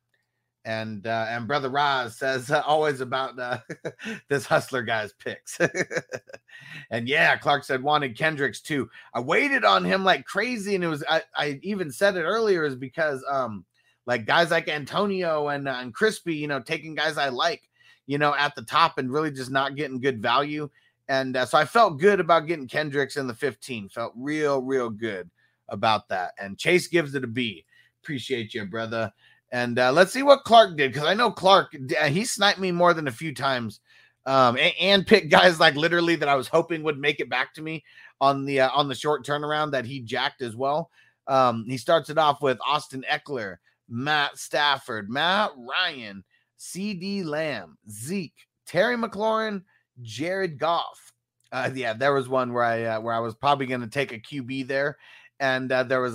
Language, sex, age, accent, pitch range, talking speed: English, male, 30-49, American, 125-165 Hz, 195 wpm